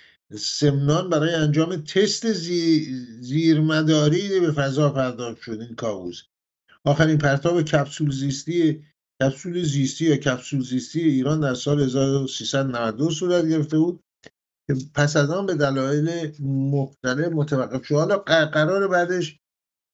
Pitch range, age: 130-160 Hz, 50-69